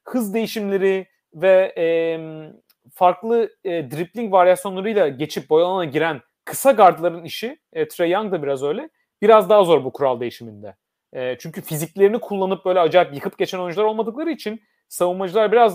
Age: 30-49